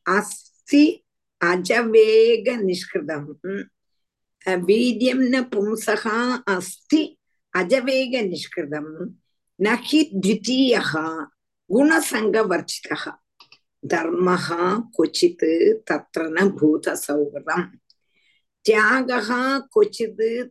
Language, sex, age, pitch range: Tamil, female, 50-69, 185-275 Hz